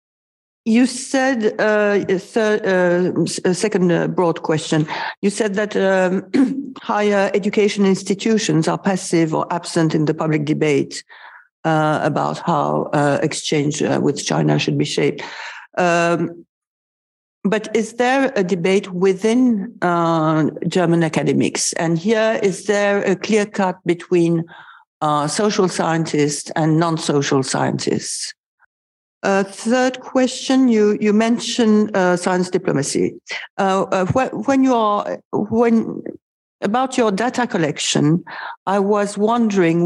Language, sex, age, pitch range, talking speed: French, female, 50-69, 160-215 Hz, 120 wpm